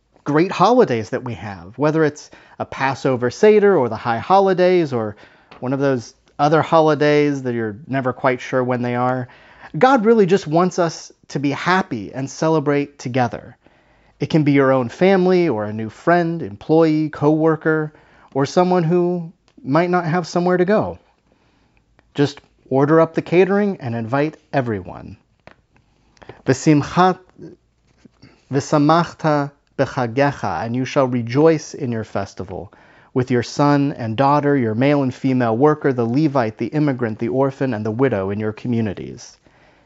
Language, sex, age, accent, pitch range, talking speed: English, male, 30-49, American, 125-170 Hz, 150 wpm